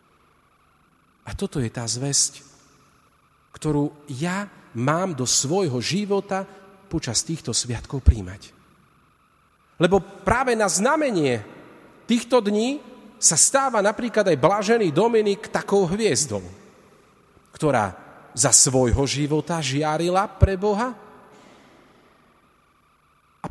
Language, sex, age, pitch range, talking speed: Slovak, male, 40-59, 135-205 Hz, 95 wpm